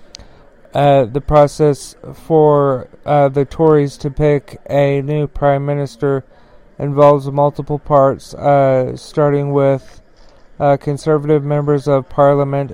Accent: American